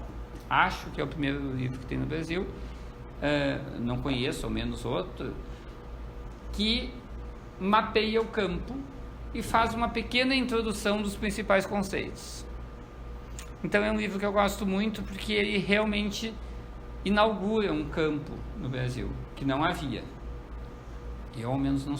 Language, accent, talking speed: Portuguese, Brazilian, 135 wpm